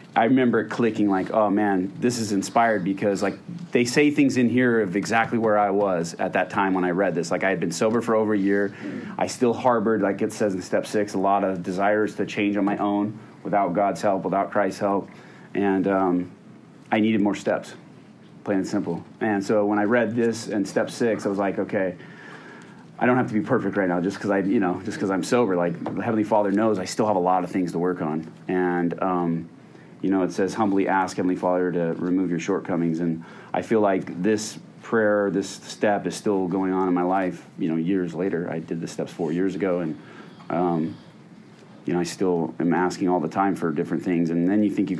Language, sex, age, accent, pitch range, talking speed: English, male, 30-49, American, 90-105 Hz, 230 wpm